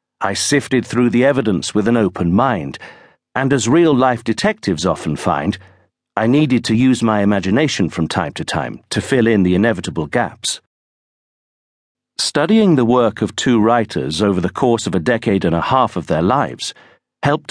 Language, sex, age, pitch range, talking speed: English, male, 50-69, 100-130 Hz, 170 wpm